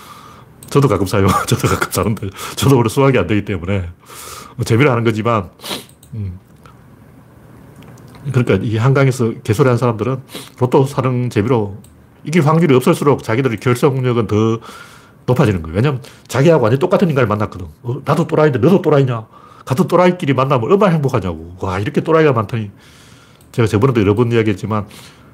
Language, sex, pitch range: Korean, male, 110-140 Hz